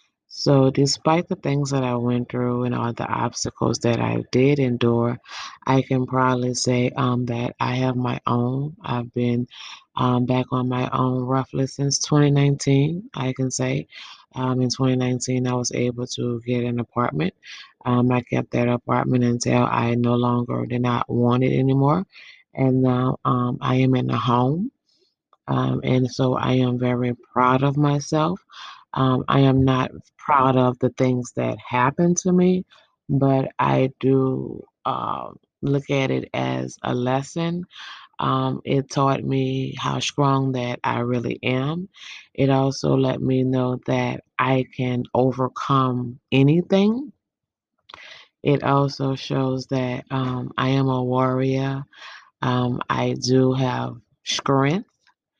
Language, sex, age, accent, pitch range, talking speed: English, female, 20-39, American, 125-135 Hz, 145 wpm